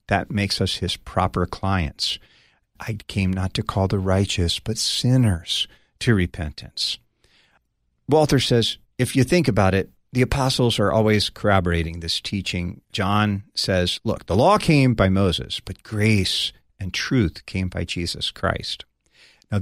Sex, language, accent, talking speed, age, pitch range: male, English, American, 145 wpm, 50-69, 95-115 Hz